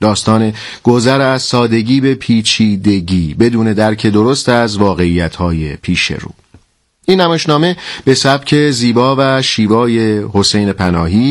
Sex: male